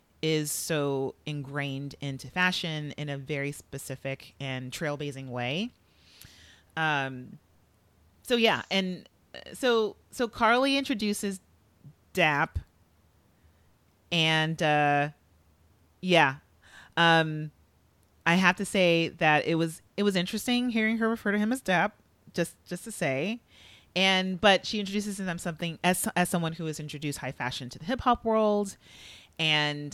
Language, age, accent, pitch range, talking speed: English, 30-49, American, 135-185 Hz, 130 wpm